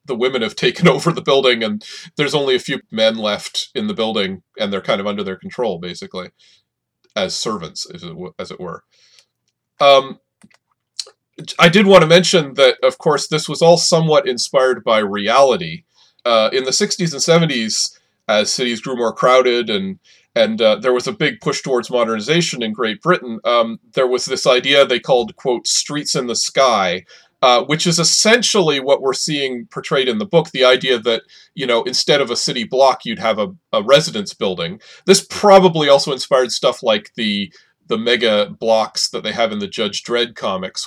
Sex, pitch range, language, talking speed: male, 120-175 Hz, English, 185 wpm